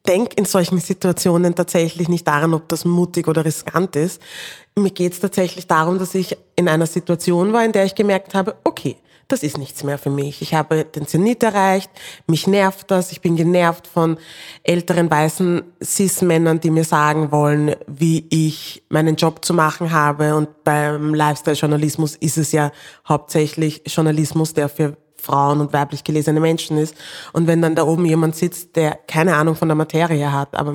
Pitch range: 150-175 Hz